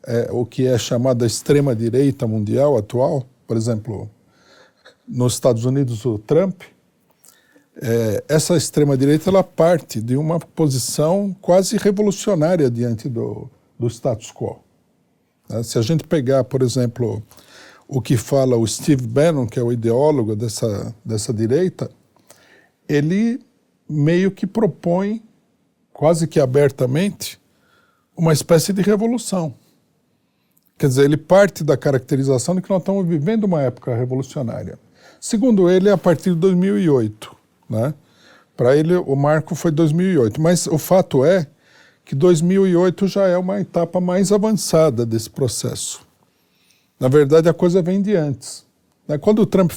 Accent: Brazilian